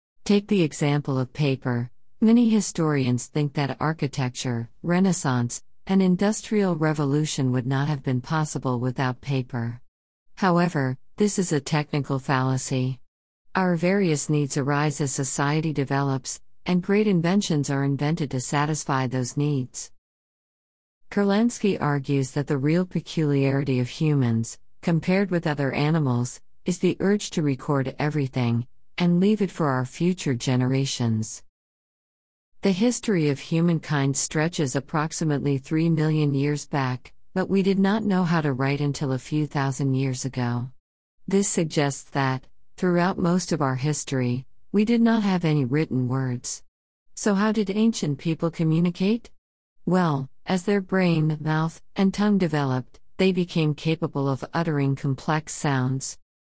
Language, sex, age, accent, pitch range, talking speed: English, female, 50-69, American, 130-175 Hz, 135 wpm